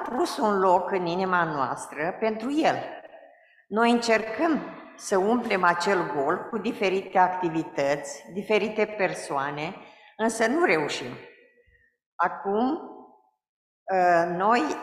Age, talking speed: 50-69, 95 wpm